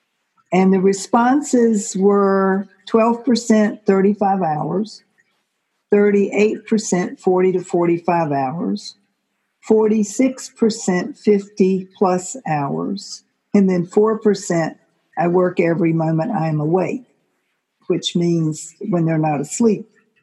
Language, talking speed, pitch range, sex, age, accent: English, 90 wpm, 170-215 Hz, female, 60-79, American